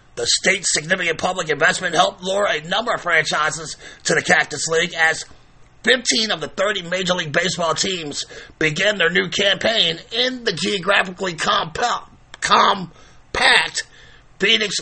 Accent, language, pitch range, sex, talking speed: American, English, 150-190 Hz, male, 140 wpm